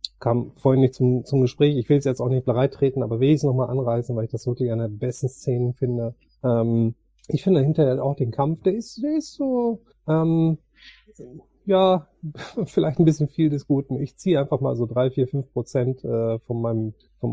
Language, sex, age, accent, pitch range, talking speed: German, male, 30-49, German, 120-140 Hz, 215 wpm